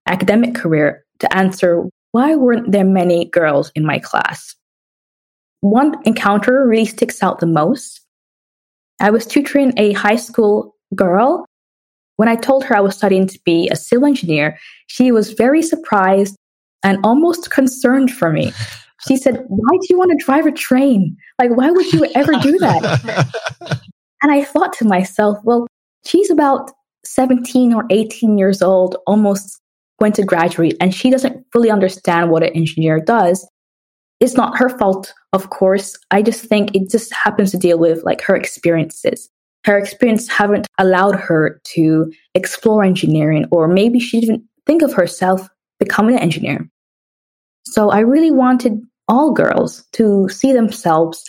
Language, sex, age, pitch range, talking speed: English, female, 20-39, 180-250 Hz, 160 wpm